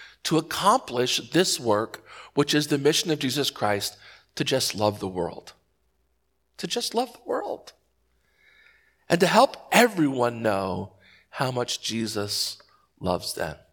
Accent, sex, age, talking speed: American, male, 50-69, 135 wpm